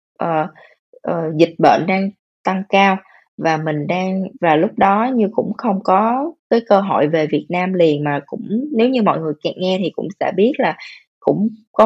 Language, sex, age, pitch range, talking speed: Vietnamese, female, 20-39, 160-225 Hz, 200 wpm